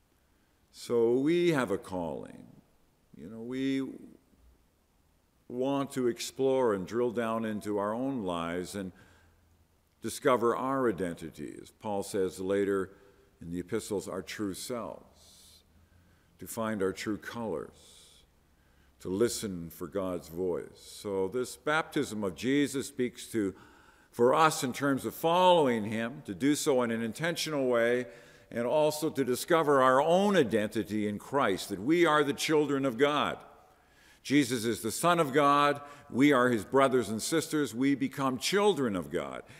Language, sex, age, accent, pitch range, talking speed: English, male, 50-69, American, 95-135 Hz, 145 wpm